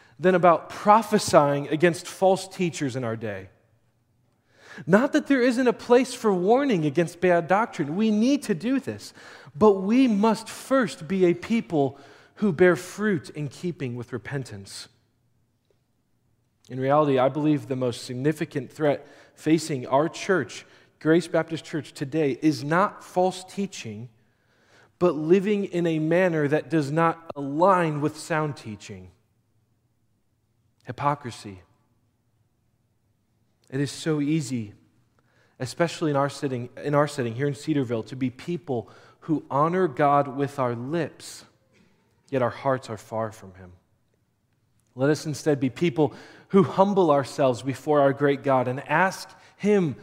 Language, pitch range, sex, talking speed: English, 120-170 Hz, male, 135 wpm